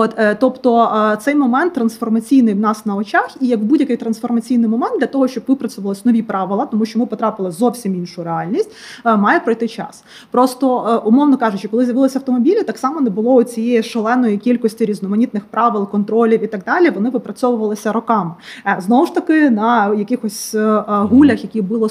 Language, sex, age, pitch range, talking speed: Ukrainian, female, 20-39, 210-250 Hz, 165 wpm